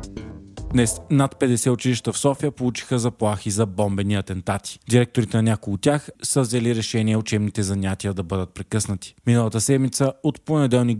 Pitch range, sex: 105-130 Hz, male